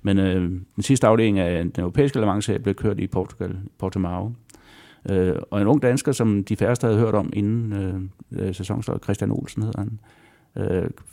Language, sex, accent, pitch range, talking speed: Danish, male, native, 95-120 Hz, 185 wpm